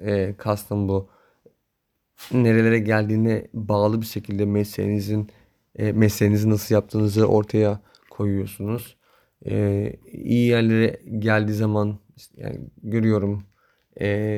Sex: male